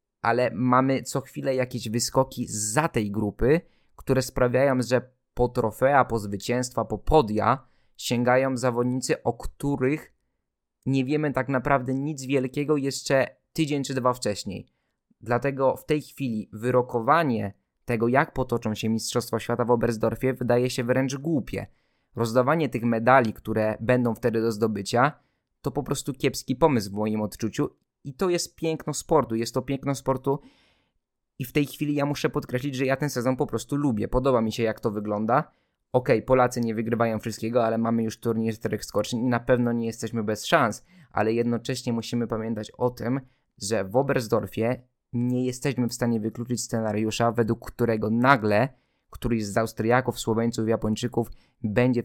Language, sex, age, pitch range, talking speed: Polish, male, 20-39, 115-135 Hz, 160 wpm